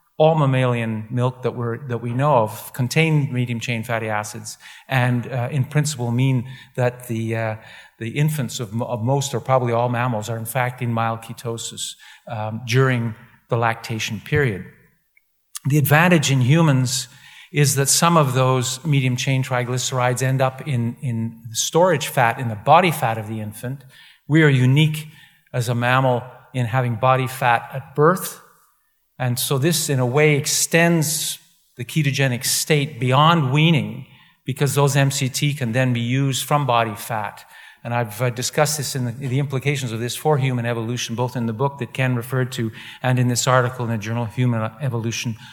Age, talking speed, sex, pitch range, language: 50-69, 170 wpm, male, 120-150 Hz, English